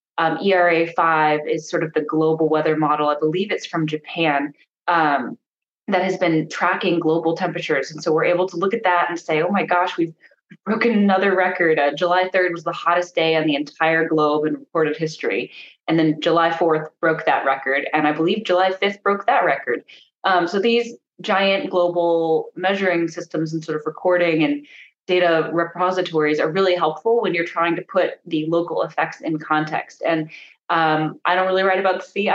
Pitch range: 155-185 Hz